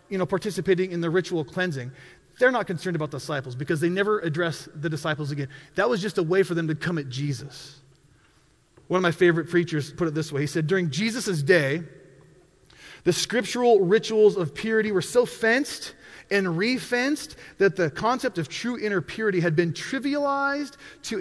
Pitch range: 145-200 Hz